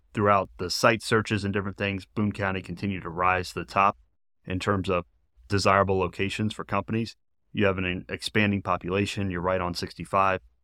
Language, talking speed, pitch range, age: English, 175 wpm, 90-100 Hz, 30-49